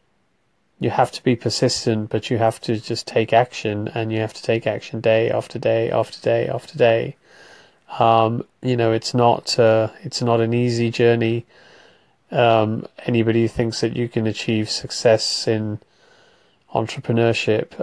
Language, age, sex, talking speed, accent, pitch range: English, 30-49, male, 160 wpm, British, 110-125 Hz